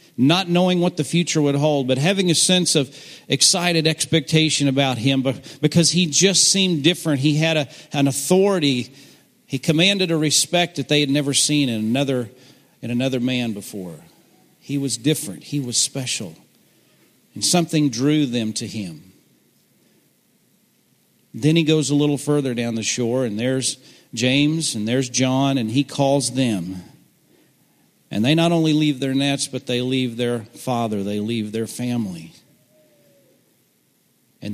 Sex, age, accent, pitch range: male, 50-69, American, 120-155 Hz